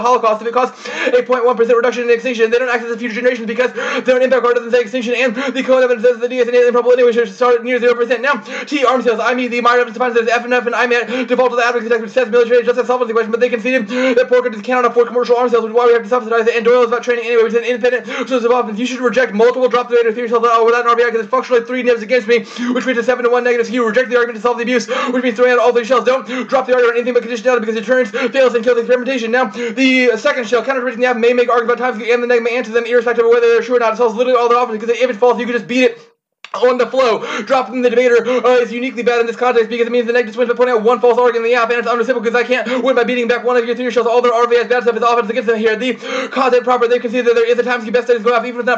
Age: 20-39